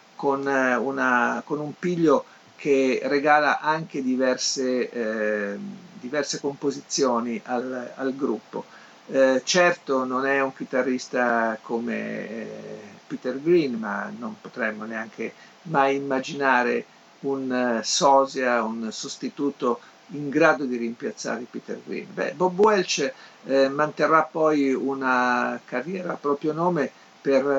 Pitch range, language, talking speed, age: 125-155 Hz, Italian, 115 wpm, 50-69